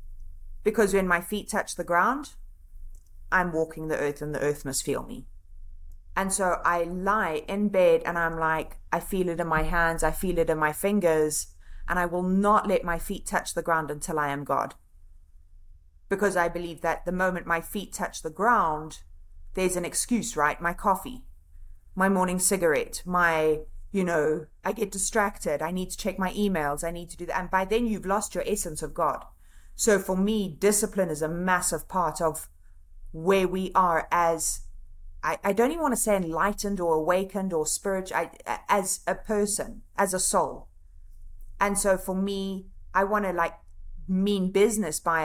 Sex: female